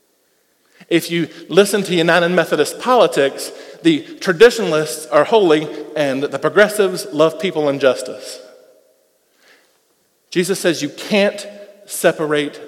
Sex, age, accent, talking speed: male, 40-59, American, 110 wpm